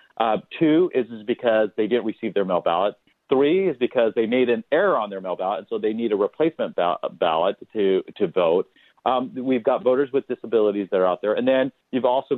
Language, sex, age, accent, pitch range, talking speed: English, male, 40-59, American, 110-125 Hz, 225 wpm